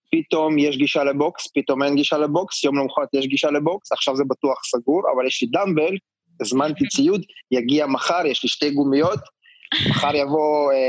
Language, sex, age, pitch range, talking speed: Hebrew, male, 20-39, 125-155 Hz, 175 wpm